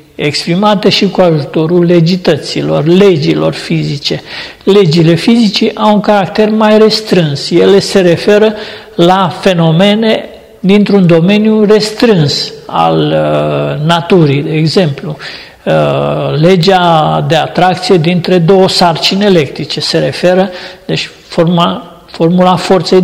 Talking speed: 100 wpm